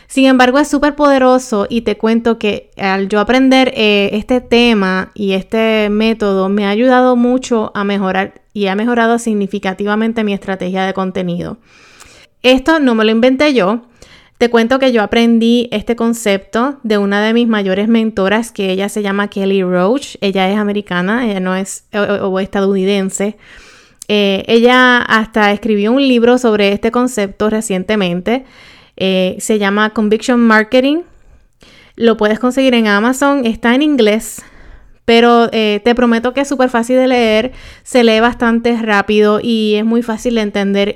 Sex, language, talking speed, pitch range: female, Spanish, 155 wpm, 205-245 Hz